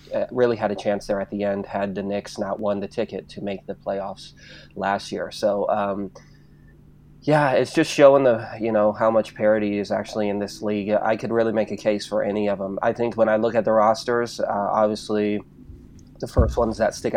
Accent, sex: American, male